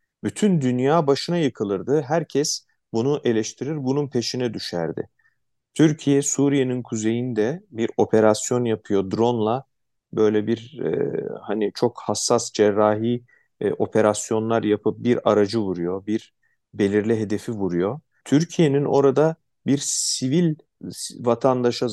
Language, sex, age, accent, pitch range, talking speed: Turkish, male, 40-59, native, 105-135 Hz, 105 wpm